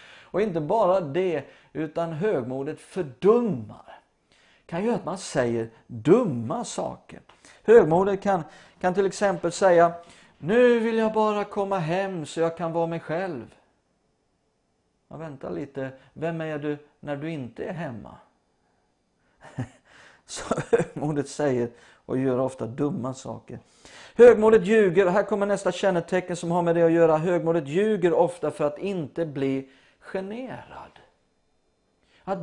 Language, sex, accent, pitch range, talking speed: English, male, Swedish, 140-195 Hz, 130 wpm